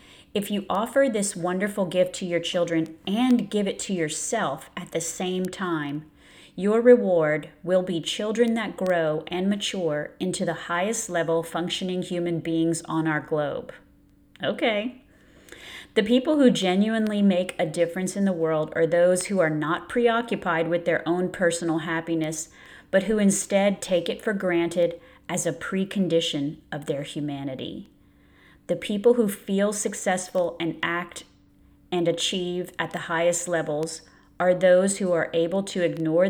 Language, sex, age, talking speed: English, female, 30-49, 150 wpm